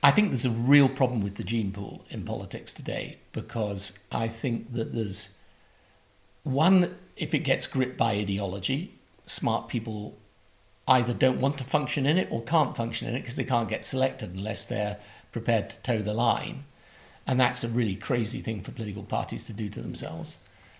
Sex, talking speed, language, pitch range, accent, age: male, 185 wpm, English, 105-130 Hz, British, 50-69